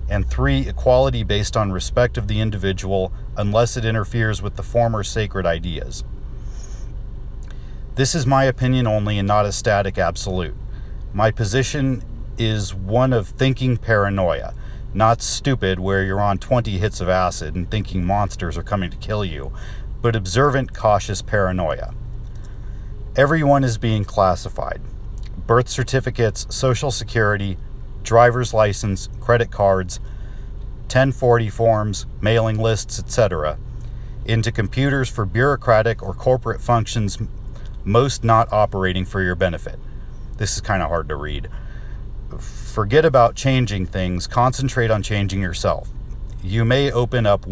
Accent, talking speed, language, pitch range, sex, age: American, 130 wpm, English, 100-120 Hz, male, 40-59